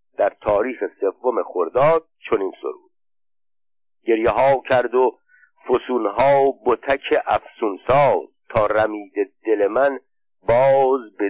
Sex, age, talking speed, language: male, 50-69, 110 wpm, Persian